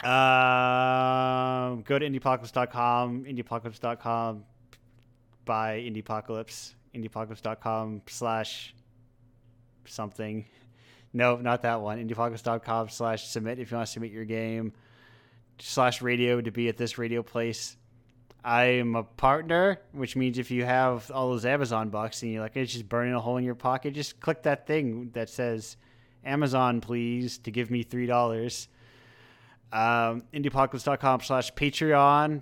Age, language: 20-39, English